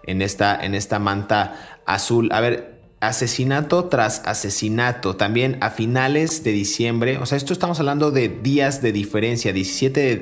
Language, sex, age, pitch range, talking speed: Spanish, male, 30-49, 105-130 Hz, 160 wpm